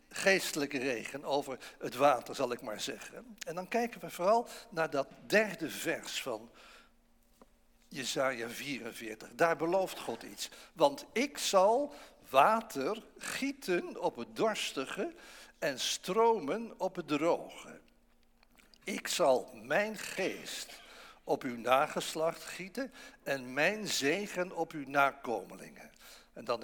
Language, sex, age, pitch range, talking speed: English, male, 60-79, 145-220 Hz, 120 wpm